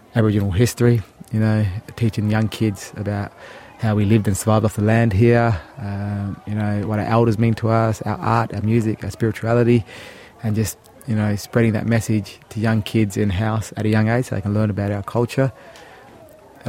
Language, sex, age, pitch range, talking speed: English, male, 20-39, 105-125 Hz, 200 wpm